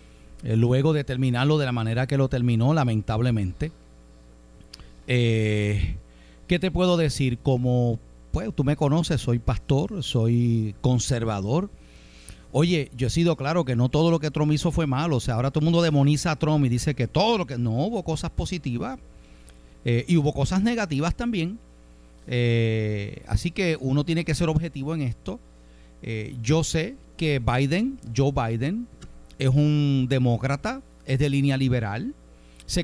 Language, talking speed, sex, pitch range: Spanish, 160 wpm, male, 110-150 Hz